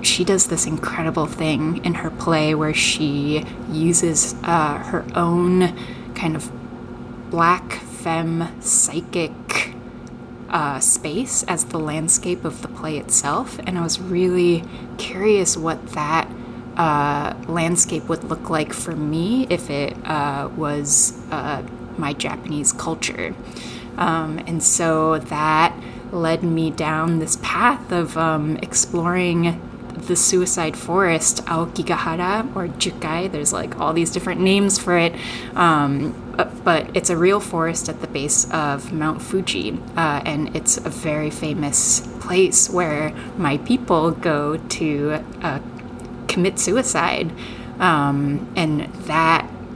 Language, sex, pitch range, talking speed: English, female, 145-175 Hz, 130 wpm